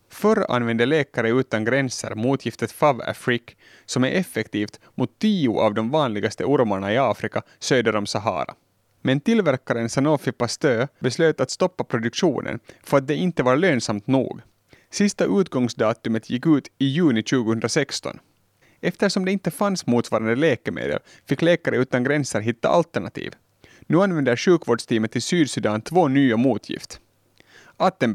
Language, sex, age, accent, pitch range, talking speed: Swedish, male, 30-49, Finnish, 120-160 Hz, 135 wpm